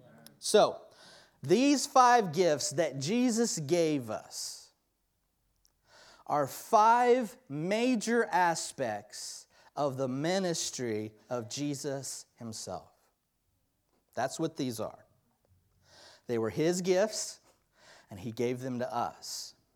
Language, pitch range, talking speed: English, 120-190 Hz, 95 wpm